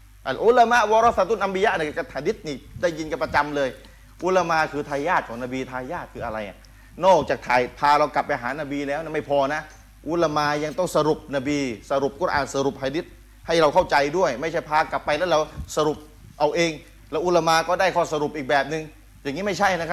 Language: Thai